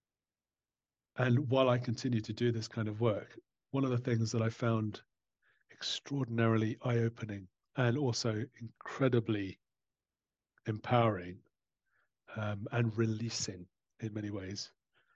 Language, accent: English, British